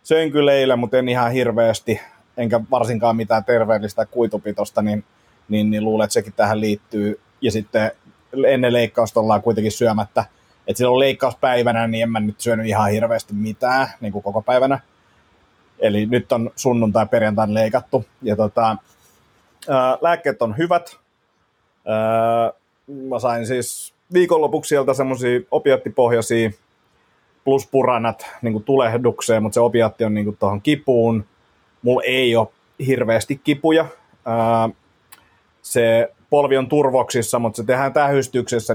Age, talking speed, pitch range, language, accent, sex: 30-49, 135 wpm, 110-130 Hz, Finnish, native, male